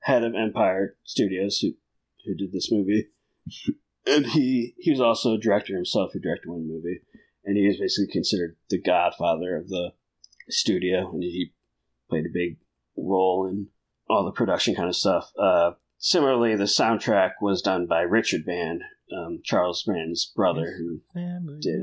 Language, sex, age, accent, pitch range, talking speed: English, male, 40-59, American, 95-120 Hz, 160 wpm